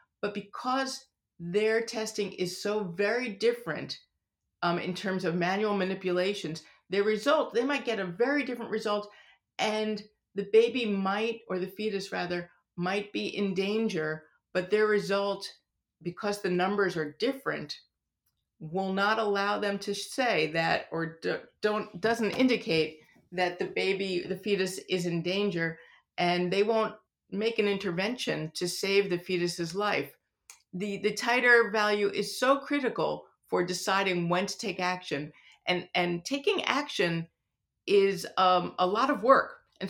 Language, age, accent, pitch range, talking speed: English, 40-59, American, 180-220 Hz, 145 wpm